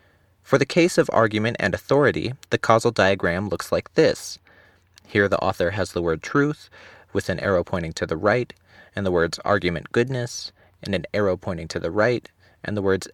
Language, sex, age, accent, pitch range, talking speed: English, male, 30-49, American, 95-125 Hz, 190 wpm